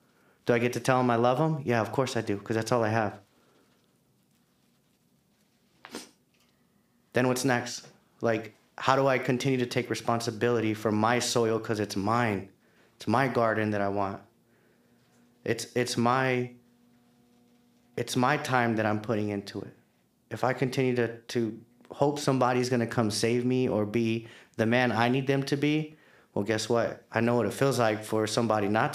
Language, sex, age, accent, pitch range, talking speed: English, male, 30-49, American, 110-125 Hz, 180 wpm